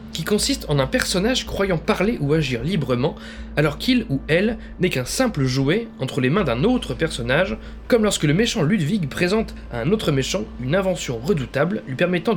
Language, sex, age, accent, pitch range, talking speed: French, male, 20-39, French, 135-205 Hz, 190 wpm